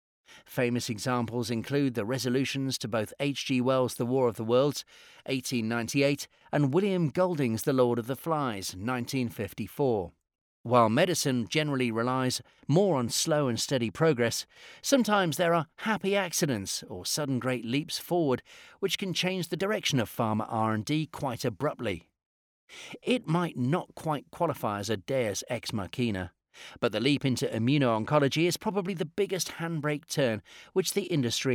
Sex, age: male, 40-59